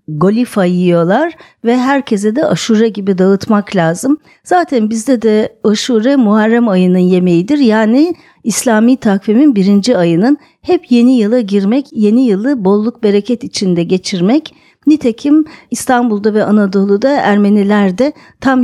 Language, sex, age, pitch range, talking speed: Turkish, female, 50-69, 195-255 Hz, 120 wpm